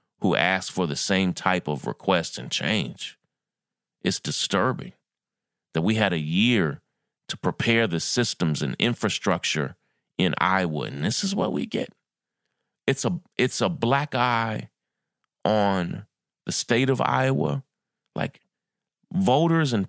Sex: male